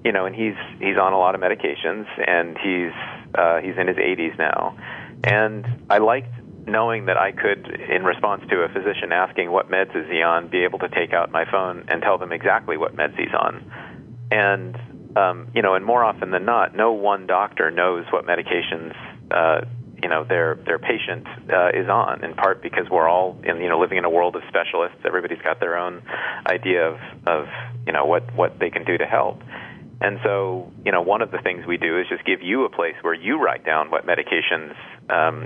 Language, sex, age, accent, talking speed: English, male, 40-59, American, 215 wpm